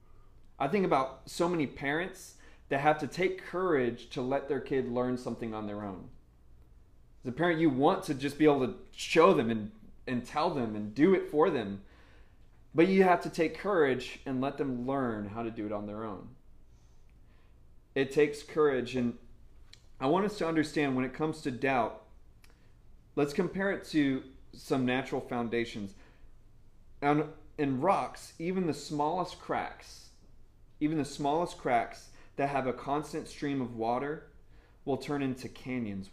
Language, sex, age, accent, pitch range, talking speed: English, male, 30-49, American, 115-145 Hz, 165 wpm